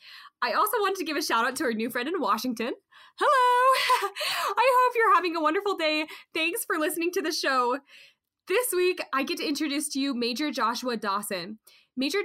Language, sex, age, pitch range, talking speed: English, female, 10-29, 245-320 Hz, 195 wpm